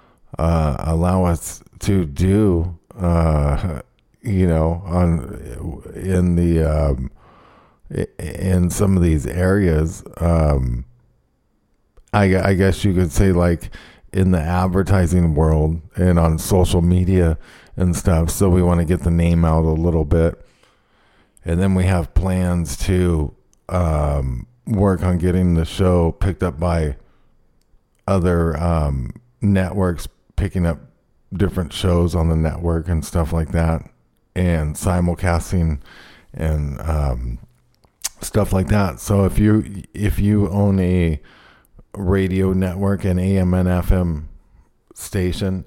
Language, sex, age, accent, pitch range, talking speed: English, male, 50-69, American, 80-95 Hz, 125 wpm